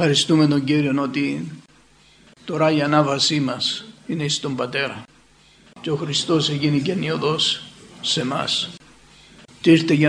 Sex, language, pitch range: male, Greek, 140-165 Hz